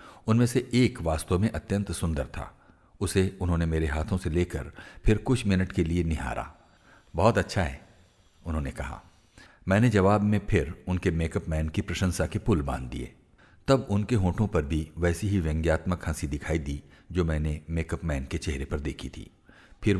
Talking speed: 175 wpm